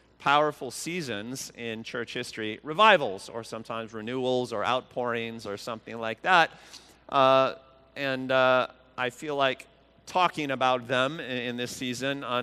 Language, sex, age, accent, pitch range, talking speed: English, male, 40-59, American, 110-135 Hz, 140 wpm